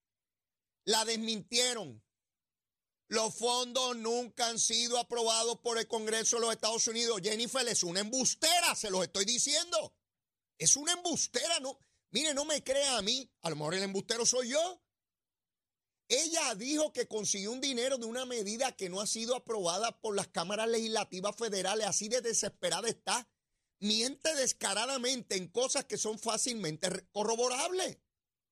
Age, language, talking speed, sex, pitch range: 30-49, Spanish, 150 wpm, male, 195-255 Hz